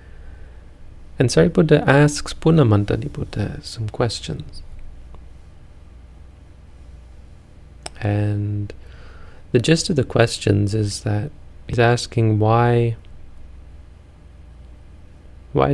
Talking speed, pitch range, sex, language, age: 70 wpm, 80-115 Hz, male, English, 30-49